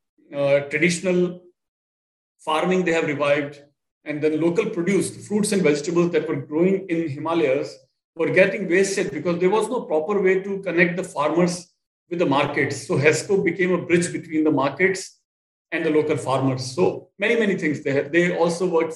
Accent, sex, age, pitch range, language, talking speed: Indian, male, 40-59, 145-185 Hz, English, 175 wpm